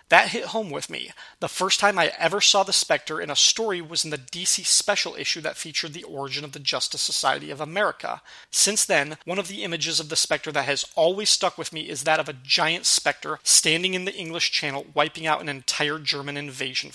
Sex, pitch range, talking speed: male, 150-185 Hz, 225 wpm